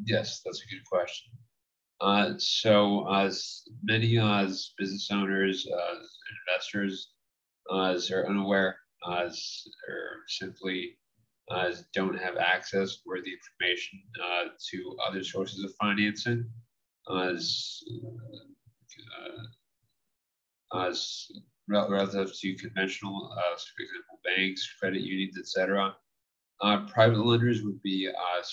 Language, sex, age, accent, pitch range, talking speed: English, male, 30-49, American, 95-115 Hz, 125 wpm